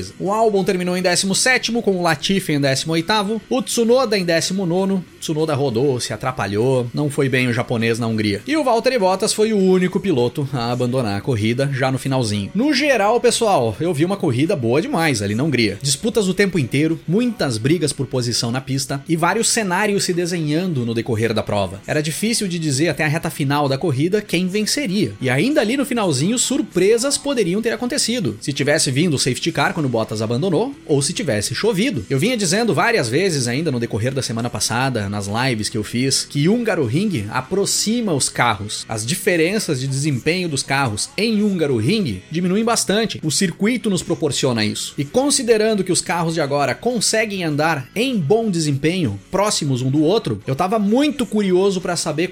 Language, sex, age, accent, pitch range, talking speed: Portuguese, male, 30-49, Brazilian, 130-210 Hz, 195 wpm